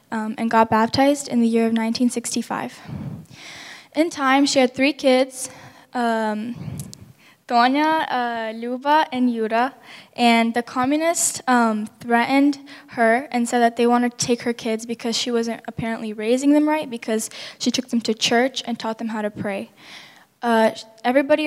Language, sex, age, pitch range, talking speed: English, female, 10-29, 225-260 Hz, 155 wpm